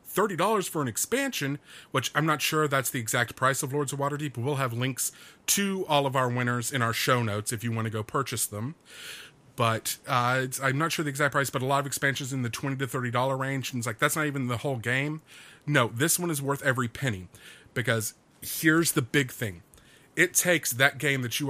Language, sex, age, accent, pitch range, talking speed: English, male, 30-49, American, 120-145 Hz, 230 wpm